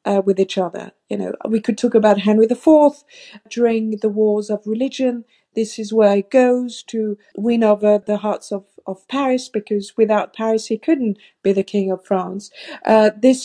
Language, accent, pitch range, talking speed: English, British, 210-250 Hz, 190 wpm